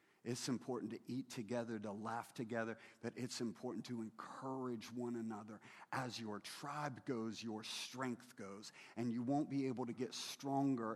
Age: 40-59